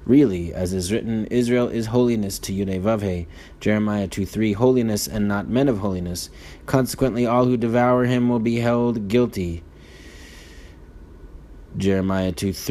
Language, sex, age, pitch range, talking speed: English, male, 30-49, 95-115 Hz, 130 wpm